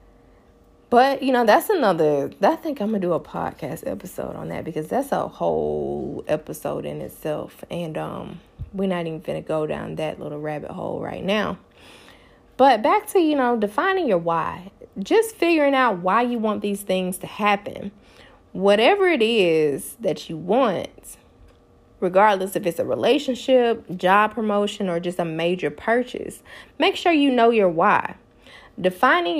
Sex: female